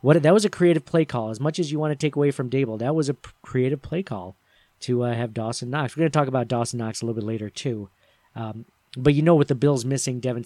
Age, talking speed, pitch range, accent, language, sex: 40-59, 285 wpm, 120-145 Hz, American, English, male